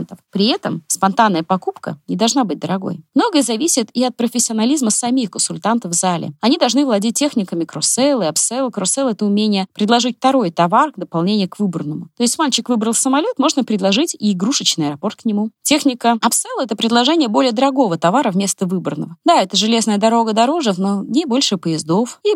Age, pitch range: 20-39, 185-255 Hz